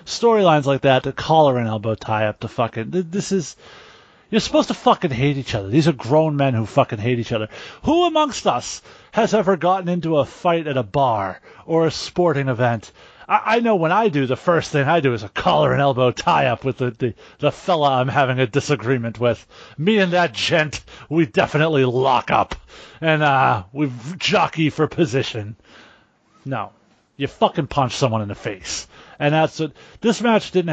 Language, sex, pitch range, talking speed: English, male, 130-185 Hz, 185 wpm